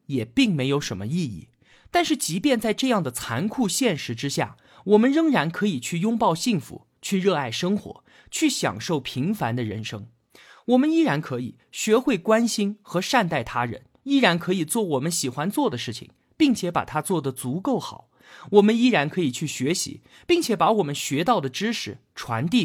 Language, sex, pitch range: Chinese, male, 130-220 Hz